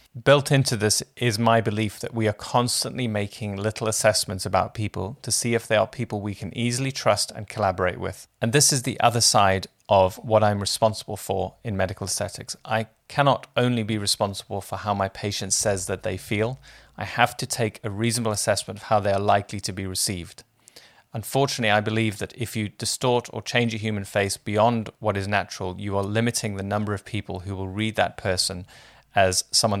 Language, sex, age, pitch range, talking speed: English, male, 30-49, 100-115 Hz, 200 wpm